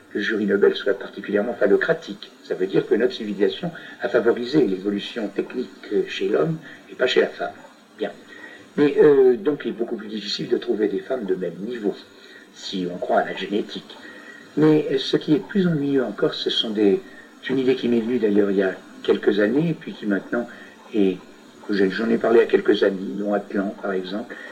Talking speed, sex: 200 wpm, male